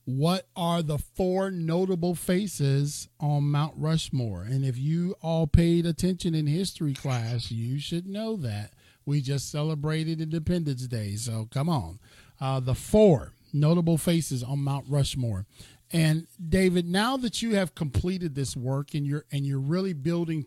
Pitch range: 135-175 Hz